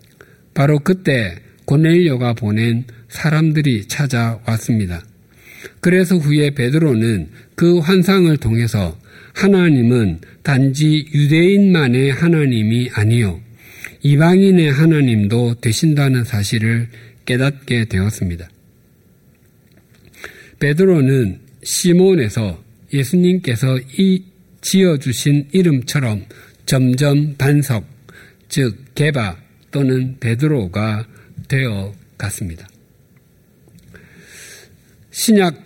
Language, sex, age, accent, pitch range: Korean, male, 50-69, native, 115-155 Hz